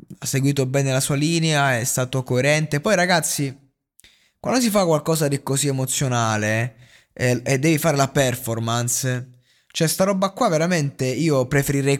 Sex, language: male, Italian